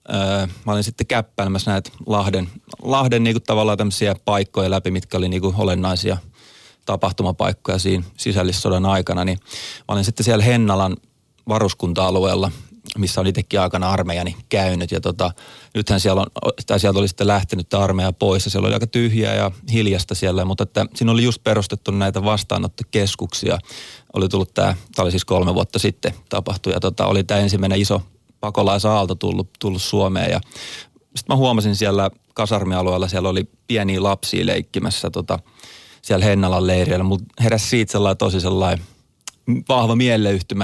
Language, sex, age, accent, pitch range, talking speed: Finnish, male, 30-49, native, 95-110 Hz, 150 wpm